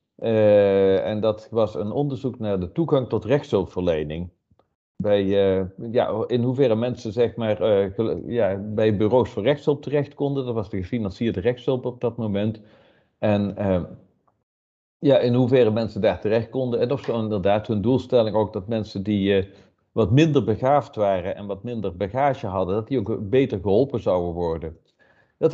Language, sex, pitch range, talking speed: Dutch, male, 100-130 Hz, 170 wpm